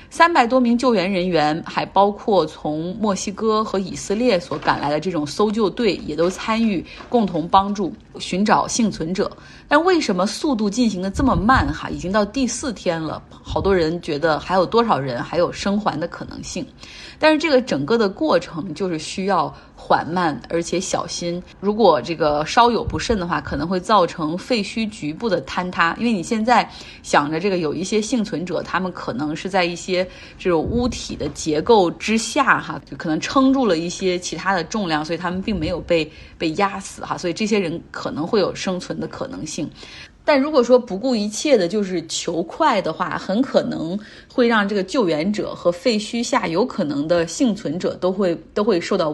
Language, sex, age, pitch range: Chinese, female, 20-39, 175-230 Hz